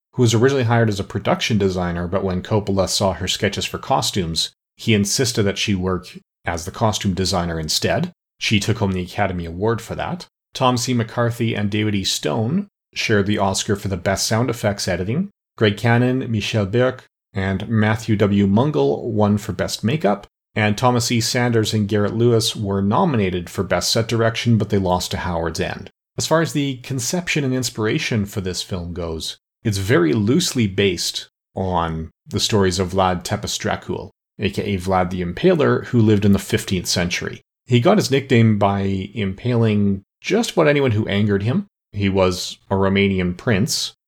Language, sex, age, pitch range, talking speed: English, male, 40-59, 95-115 Hz, 175 wpm